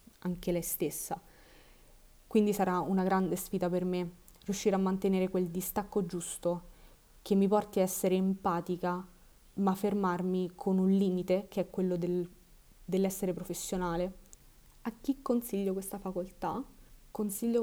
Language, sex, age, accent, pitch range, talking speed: Italian, female, 20-39, native, 180-205 Hz, 135 wpm